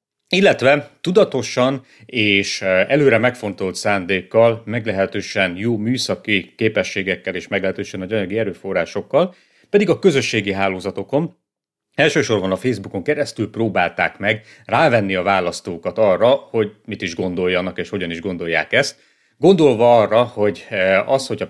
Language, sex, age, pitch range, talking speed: Hungarian, male, 30-49, 95-125 Hz, 115 wpm